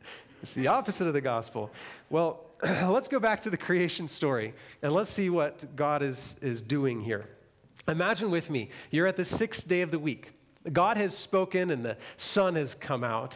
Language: English